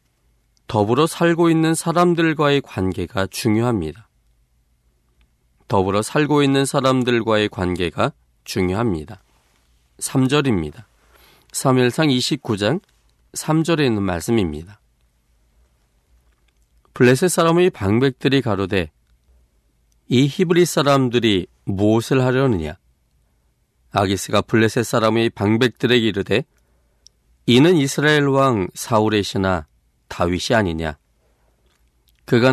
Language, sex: Korean, male